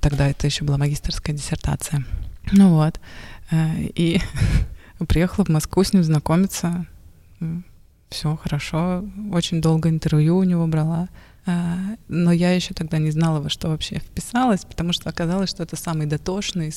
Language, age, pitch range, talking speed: Russian, 20-39, 155-175 Hz, 145 wpm